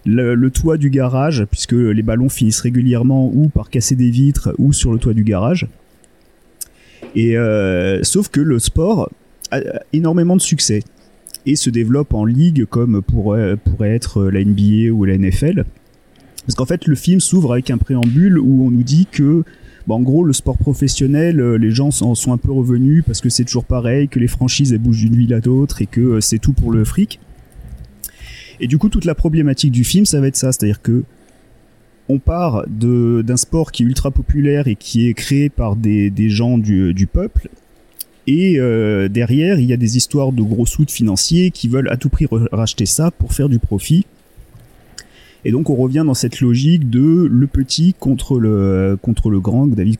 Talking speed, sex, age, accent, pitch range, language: 195 wpm, male, 30-49, French, 110-140 Hz, French